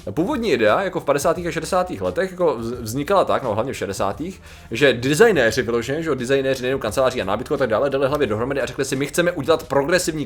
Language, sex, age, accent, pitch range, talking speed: Czech, male, 20-39, native, 125-155 Hz, 220 wpm